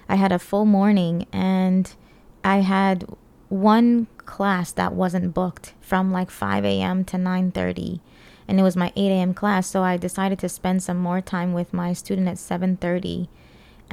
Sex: female